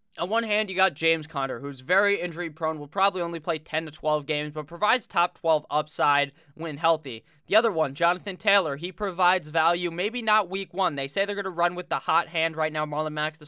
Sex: male